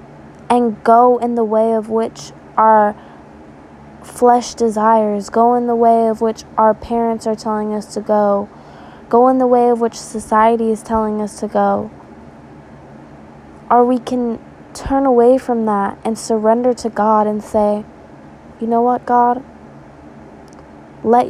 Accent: American